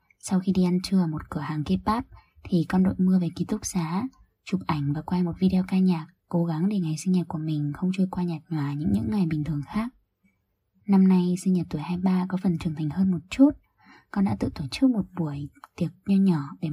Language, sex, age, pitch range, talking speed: Vietnamese, female, 20-39, 155-190 Hz, 250 wpm